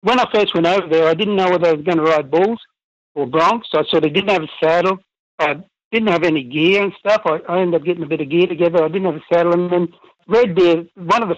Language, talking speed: English, 285 wpm